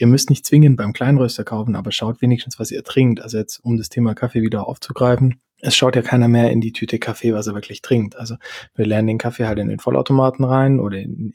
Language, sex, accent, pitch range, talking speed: German, male, German, 110-125 Hz, 245 wpm